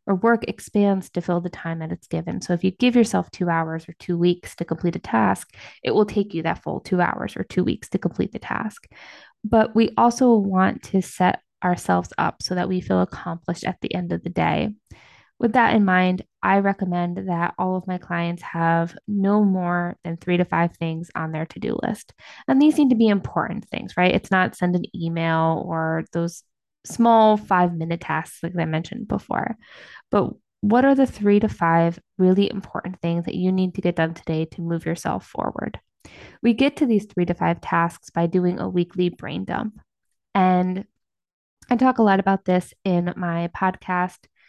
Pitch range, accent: 170-210 Hz, American